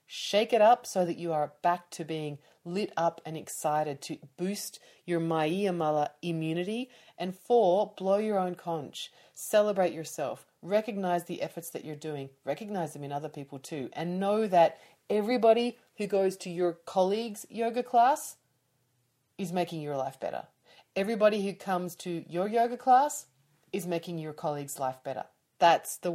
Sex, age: female, 30-49